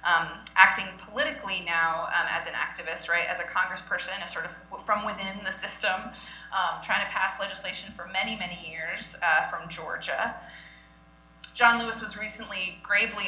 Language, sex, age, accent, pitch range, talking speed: English, female, 20-39, American, 165-215 Hz, 165 wpm